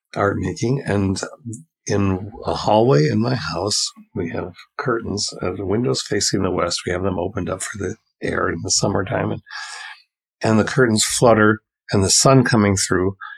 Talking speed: 175 wpm